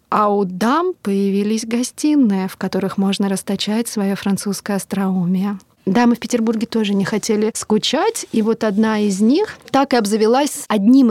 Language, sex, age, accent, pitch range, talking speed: Russian, female, 20-39, native, 205-245 Hz, 150 wpm